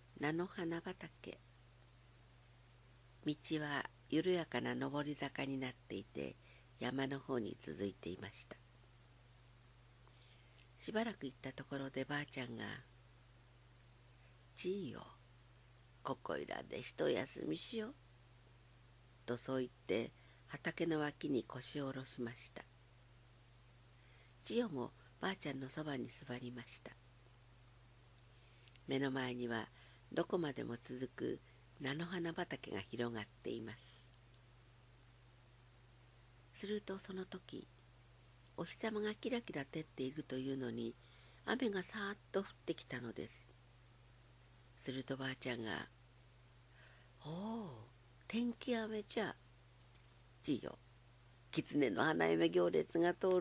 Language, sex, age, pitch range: Japanese, female, 60-79, 120-135 Hz